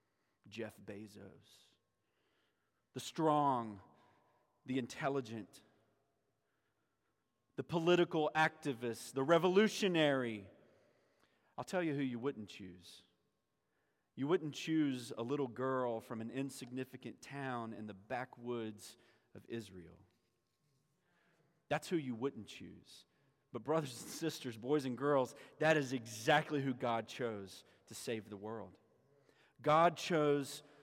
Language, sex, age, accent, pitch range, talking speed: English, male, 40-59, American, 120-175 Hz, 110 wpm